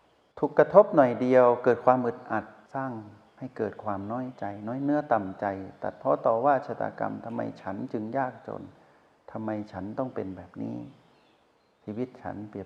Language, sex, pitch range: Thai, male, 105-125 Hz